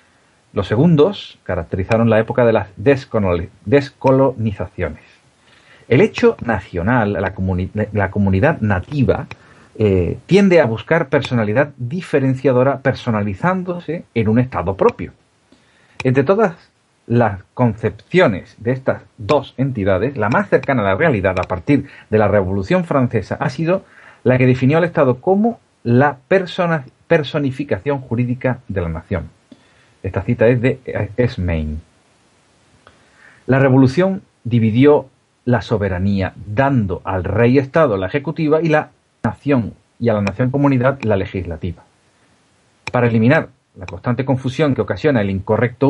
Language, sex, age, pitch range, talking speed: Spanish, male, 40-59, 105-140 Hz, 120 wpm